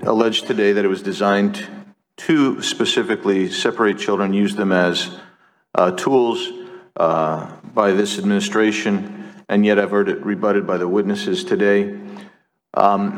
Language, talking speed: English, 135 wpm